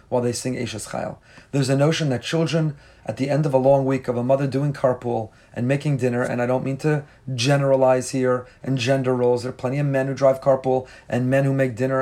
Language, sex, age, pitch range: English, male, 40-59, 125-145 Hz